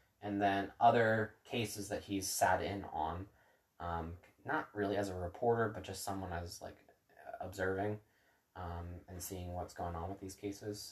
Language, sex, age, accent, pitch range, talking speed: English, male, 20-39, American, 80-100 Hz, 165 wpm